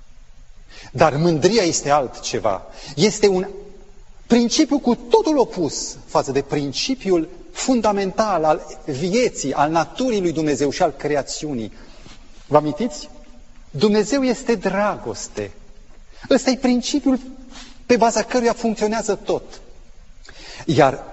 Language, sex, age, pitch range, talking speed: Romanian, male, 30-49, 145-235 Hz, 105 wpm